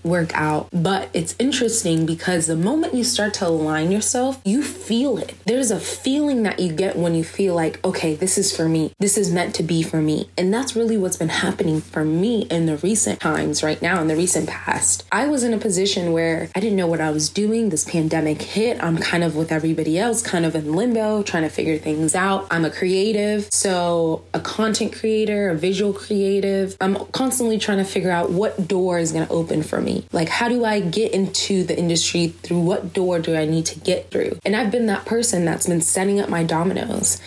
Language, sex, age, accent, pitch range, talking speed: English, female, 20-39, American, 165-205 Hz, 225 wpm